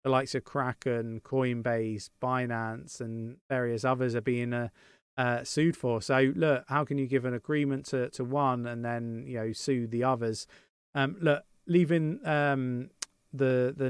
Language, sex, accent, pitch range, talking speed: English, male, British, 120-140 Hz, 170 wpm